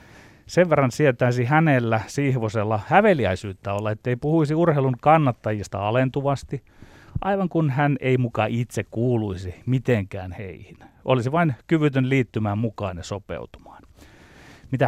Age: 30-49